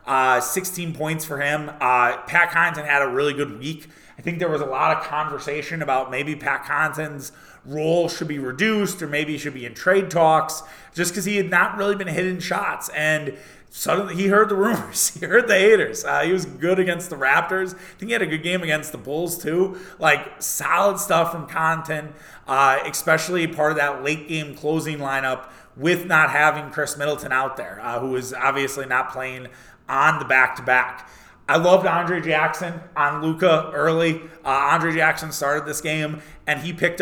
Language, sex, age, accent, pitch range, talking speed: English, male, 30-49, American, 145-185 Hz, 195 wpm